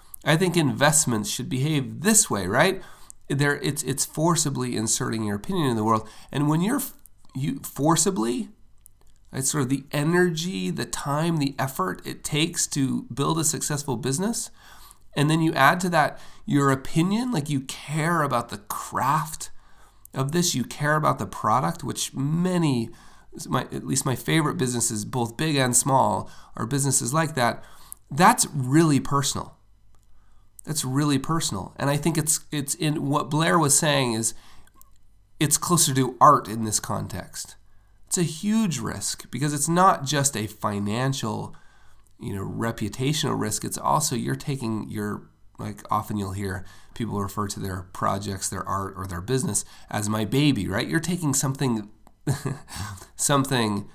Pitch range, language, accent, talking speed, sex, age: 110-155 Hz, English, American, 155 wpm, male, 30-49